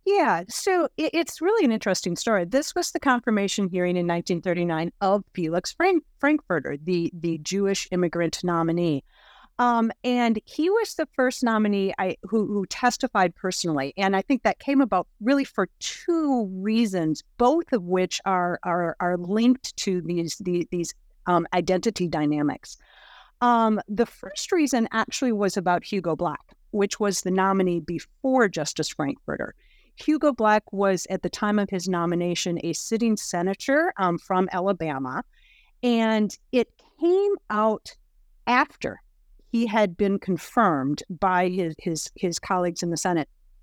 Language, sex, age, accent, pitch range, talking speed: English, female, 40-59, American, 175-240 Hz, 145 wpm